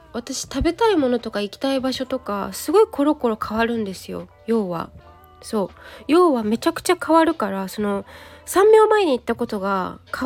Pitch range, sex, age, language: 195-270 Hz, female, 20-39, Japanese